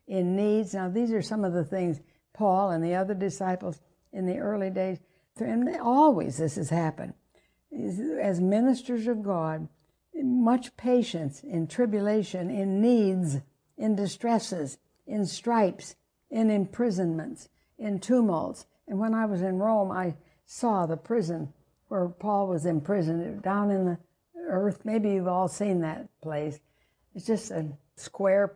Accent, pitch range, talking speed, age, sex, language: American, 180-215 Hz, 145 wpm, 60-79, female, English